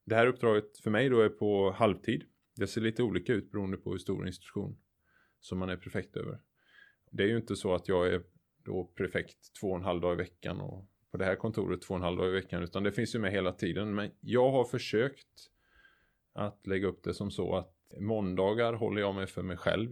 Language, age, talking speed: Swedish, 20-39, 235 wpm